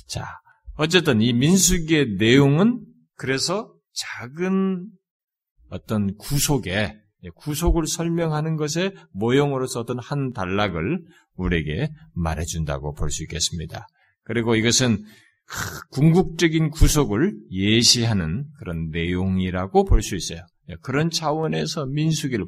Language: Korean